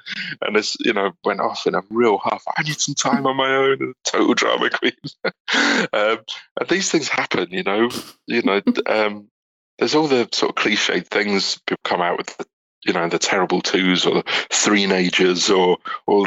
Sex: male